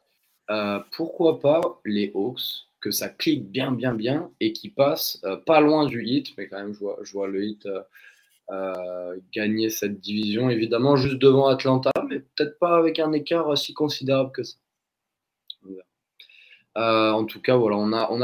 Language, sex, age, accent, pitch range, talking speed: French, male, 20-39, French, 105-135 Hz, 185 wpm